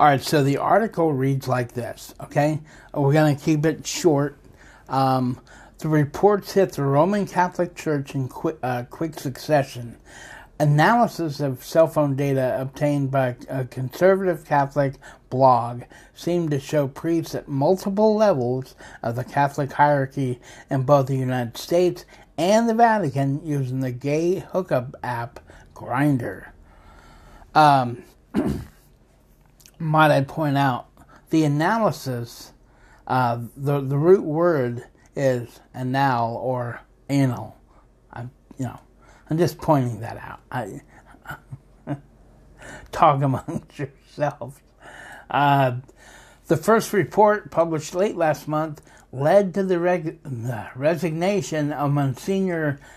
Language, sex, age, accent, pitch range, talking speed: English, male, 60-79, American, 130-165 Hz, 120 wpm